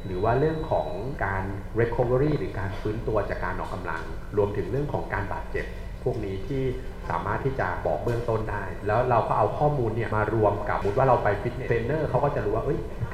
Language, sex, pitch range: Thai, male, 95-125 Hz